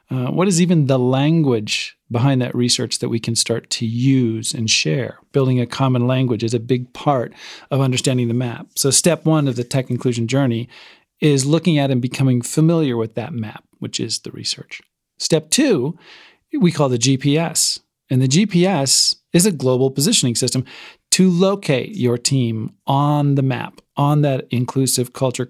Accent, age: American, 40-59